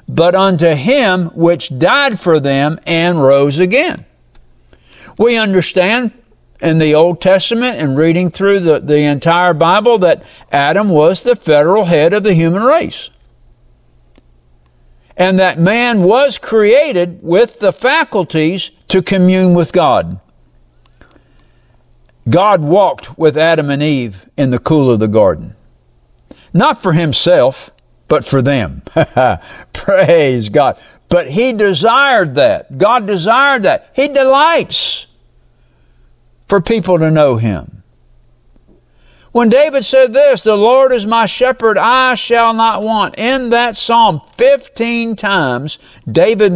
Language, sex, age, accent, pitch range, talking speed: English, male, 60-79, American, 140-230 Hz, 125 wpm